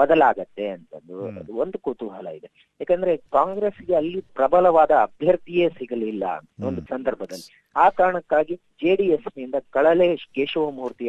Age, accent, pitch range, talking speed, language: 30-49, native, 125-175 Hz, 105 wpm, Kannada